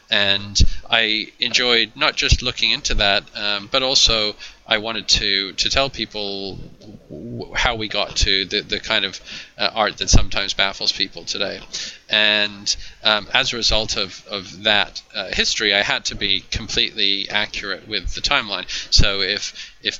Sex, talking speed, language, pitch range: male, 160 wpm, English, 95-110 Hz